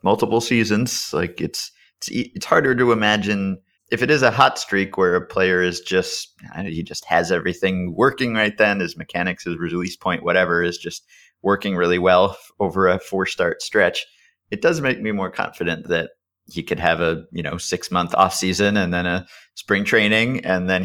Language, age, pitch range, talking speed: English, 30-49, 90-110 Hz, 185 wpm